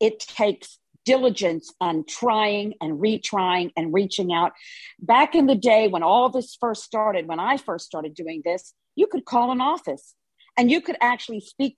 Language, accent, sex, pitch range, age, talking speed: English, American, female, 180-235 Hz, 50-69, 180 wpm